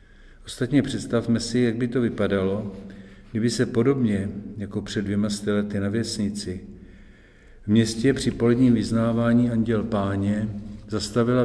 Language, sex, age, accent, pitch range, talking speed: Czech, male, 50-69, native, 100-115 Hz, 125 wpm